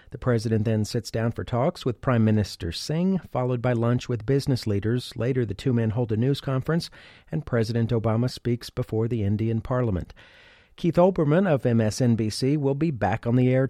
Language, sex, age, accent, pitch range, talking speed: English, male, 40-59, American, 115-150 Hz, 190 wpm